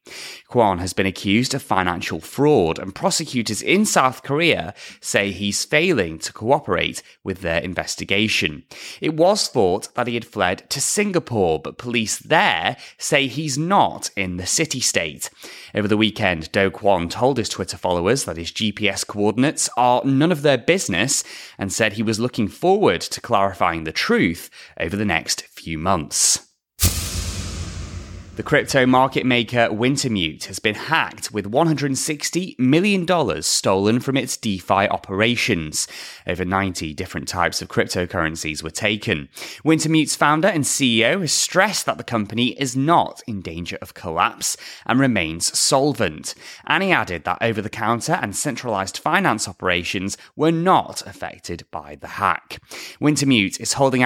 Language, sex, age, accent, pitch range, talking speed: English, male, 20-39, British, 90-130 Hz, 145 wpm